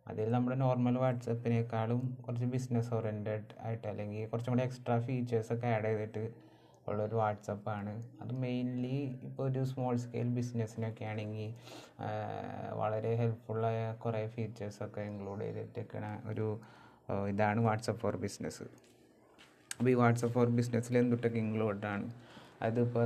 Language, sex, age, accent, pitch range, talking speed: Malayalam, male, 20-39, native, 110-120 Hz, 115 wpm